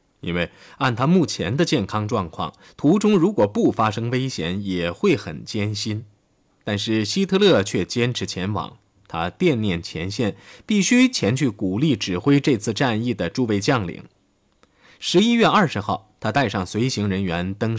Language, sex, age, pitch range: Chinese, male, 20-39, 100-140 Hz